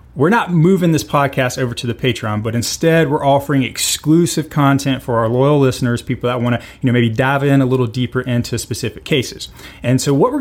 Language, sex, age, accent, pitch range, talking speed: English, male, 30-49, American, 125-160 Hz, 215 wpm